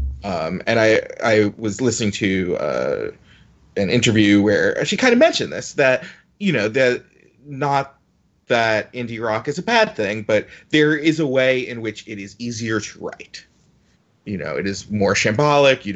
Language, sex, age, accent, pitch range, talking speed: English, male, 30-49, American, 100-130 Hz, 175 wpm